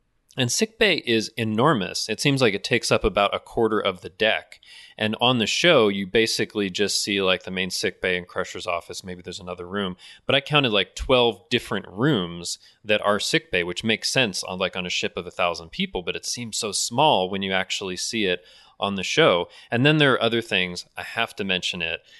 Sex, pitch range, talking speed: male, 95-120 Hz, 220 wpm